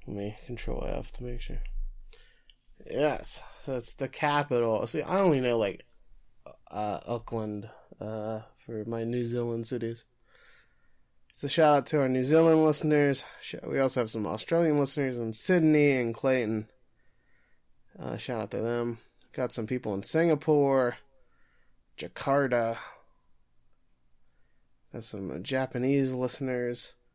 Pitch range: 115-140 Hz